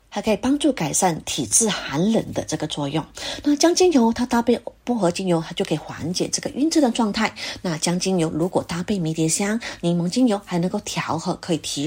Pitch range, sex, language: 165-245 Hz, female, Chinese